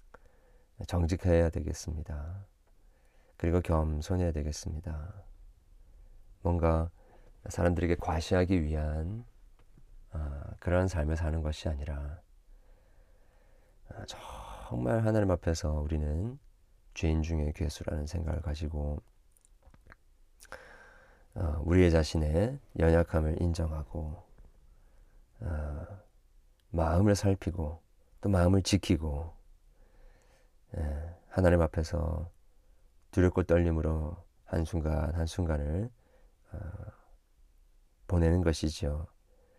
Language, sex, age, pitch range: Korean, male, 40-59, 80-95 Hz